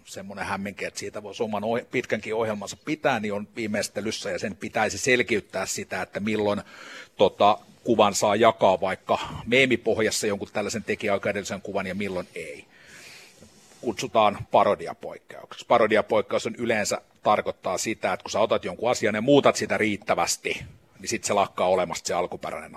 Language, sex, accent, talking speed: Finnish, male, native, 145 wpm